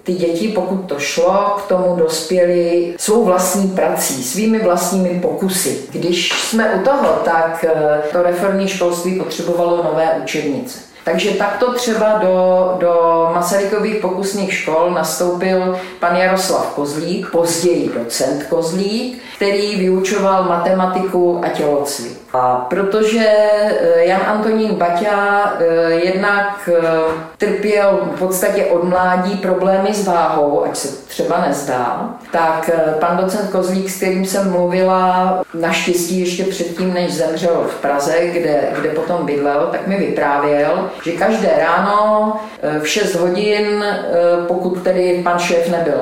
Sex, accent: female, native